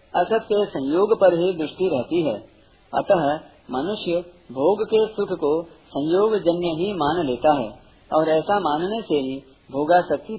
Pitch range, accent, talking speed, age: 145-200 Hz, native, 145 wpm, 50-69